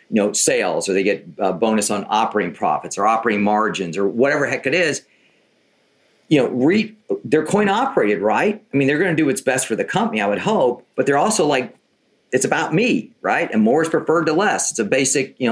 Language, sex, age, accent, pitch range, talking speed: English, male, 50-69, American, 115-170 Hz, 225 wpm